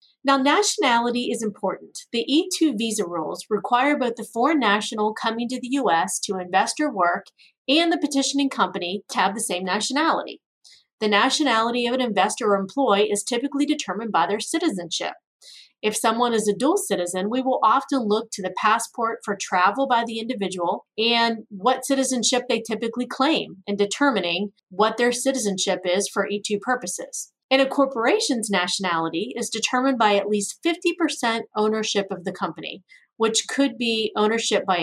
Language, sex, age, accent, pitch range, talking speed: English, female, 30-49, American, 200-270 Hz, 165 wpm